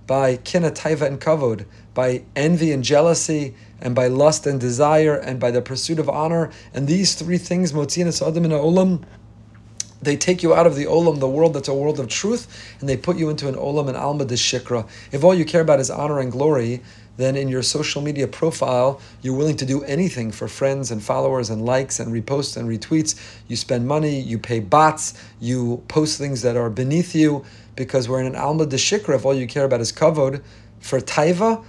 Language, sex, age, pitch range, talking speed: English, male, 40-59, 120-150 Hz, 210 wpm